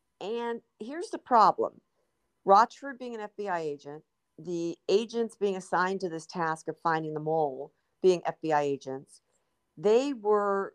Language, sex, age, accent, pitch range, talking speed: English, female, 50-69, American, 165-215 Hz, 140 wpm